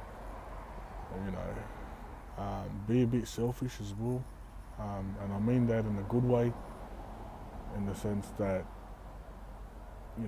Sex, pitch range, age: male, 100-110 Hz, 20-39